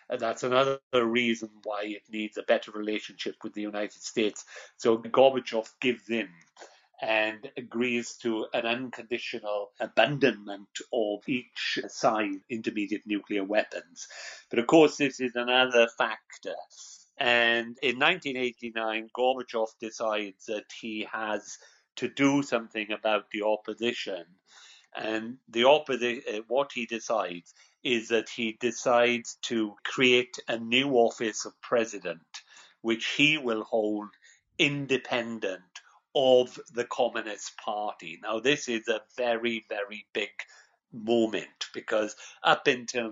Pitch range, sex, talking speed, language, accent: 110-125 Hz, male, 125 wpm, English, British